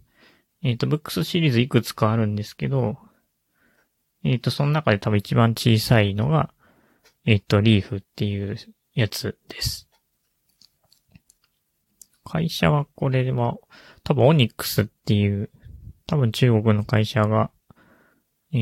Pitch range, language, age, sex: 105-130 Hz, Japanese, 20-39, male